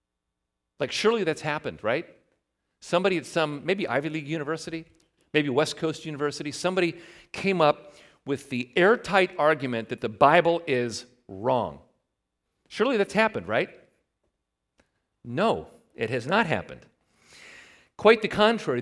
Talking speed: 130 wpm